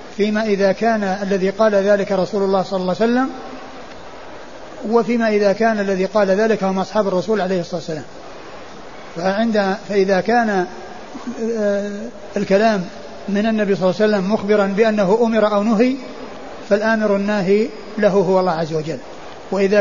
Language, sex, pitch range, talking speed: Arabic, male, 195-220 Hz, 140 wpm